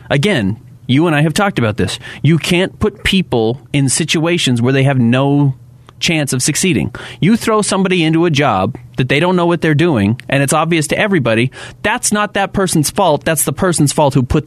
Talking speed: 205 wpm